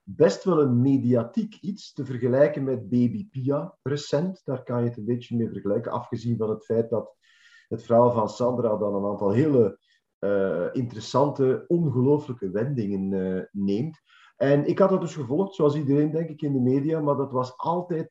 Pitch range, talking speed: 120-165 Hz, 180 wpm